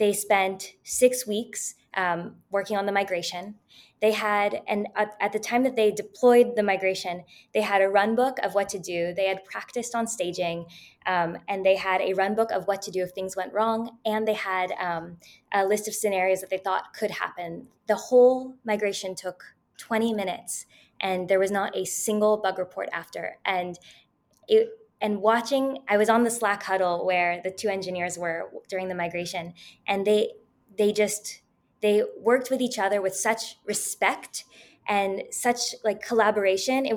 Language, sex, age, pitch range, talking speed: English, female, 20-39, 190-225 Hz, 185 wpm